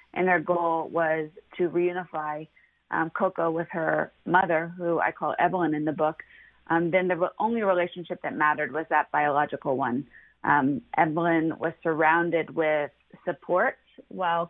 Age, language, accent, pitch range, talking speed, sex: 30-49, English, American, 155-190 Hz, 150 wpm, female